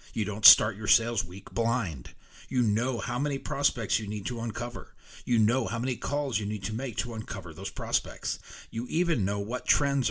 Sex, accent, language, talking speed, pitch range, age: male, American, English, 200 wpm, 100-125 Hz, 40-59